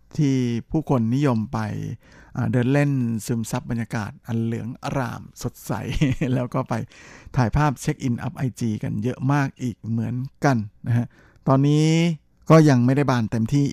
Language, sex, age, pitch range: Thai, male, 60-79, 115-140 Hz